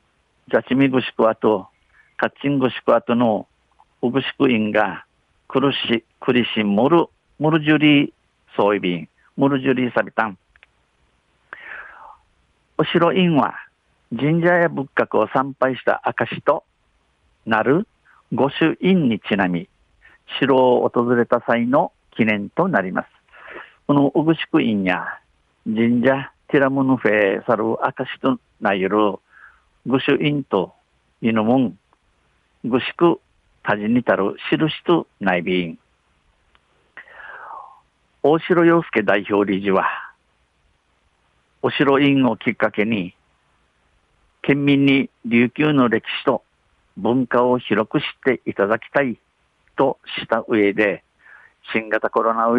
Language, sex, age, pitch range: Japanese, male, 50-69, 105-140 Hz